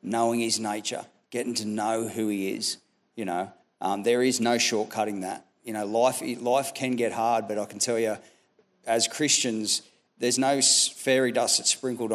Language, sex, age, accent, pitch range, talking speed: English, male, 40-59, Australian, 110-125 Hz, 185 wpm